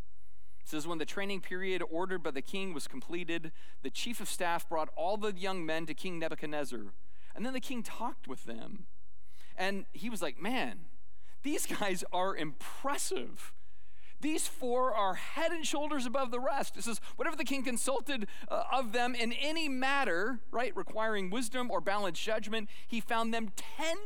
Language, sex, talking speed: English, male, 170 wpm